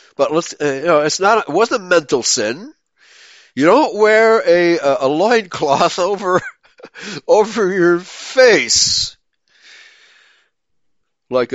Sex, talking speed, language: male, 130 wpm, English